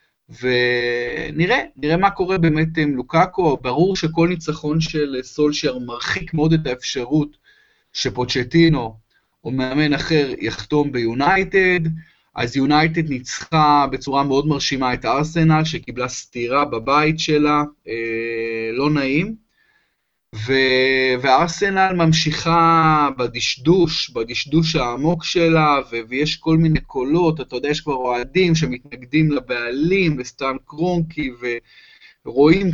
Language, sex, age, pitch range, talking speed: Hebrew, male, 20-39, 130-165 Hz, 110 wpm